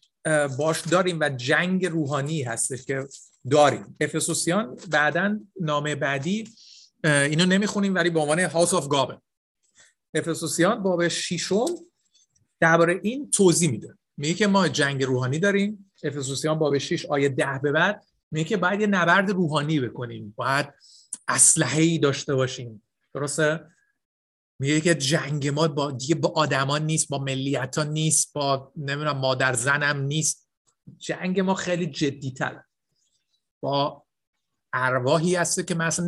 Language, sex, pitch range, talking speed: Persian, male, 145-175 Hz, 130 wpm